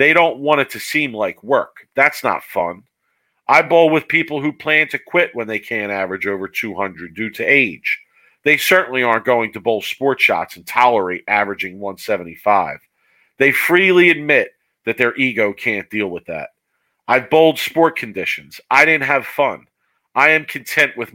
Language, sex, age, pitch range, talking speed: English, male, 40-59, 115-160 Hz, 175 wpm